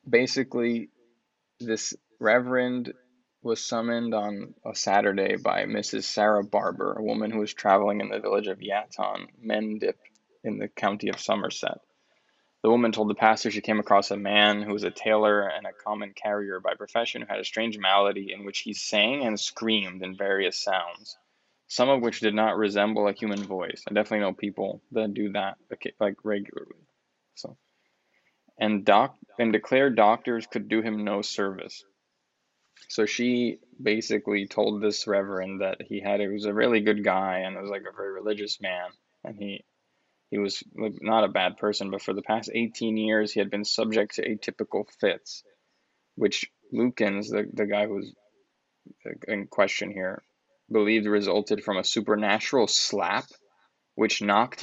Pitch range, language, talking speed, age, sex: 100-110 Hz, English, 165 wpm, 20-39, male